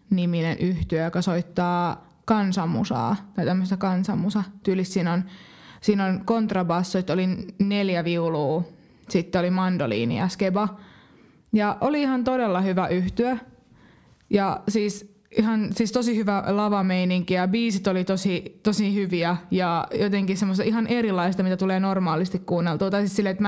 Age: 20-39